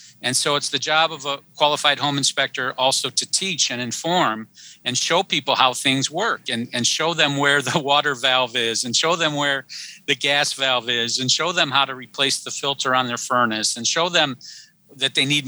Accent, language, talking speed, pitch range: American, English, 215 wpm, 130-155 Hz